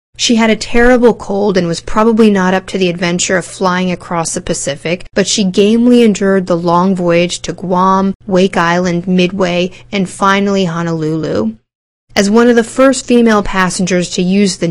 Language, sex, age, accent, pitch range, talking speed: English, female, 30-49, American, 175-215 Hz, 175 wpm